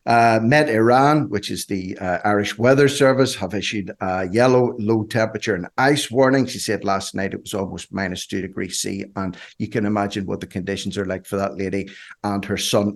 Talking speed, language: 210 wpm, English